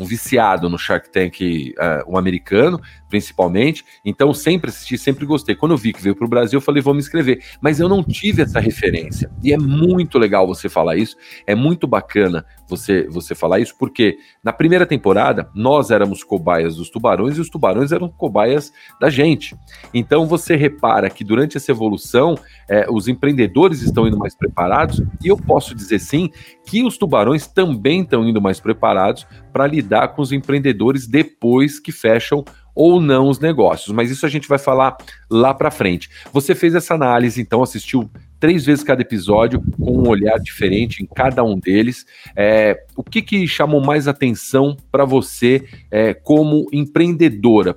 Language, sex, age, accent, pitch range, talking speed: Portuguese, male, 40-59, Brazilian, 105-150 Hz, 175 wpm